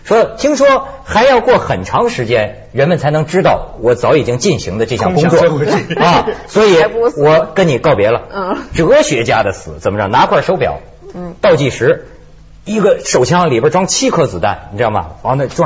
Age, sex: 50-69, male